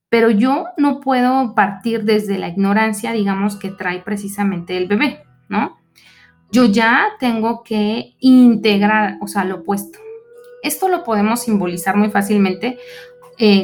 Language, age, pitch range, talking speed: Spanish, 30-49, 205-260 Hz, 135 wpm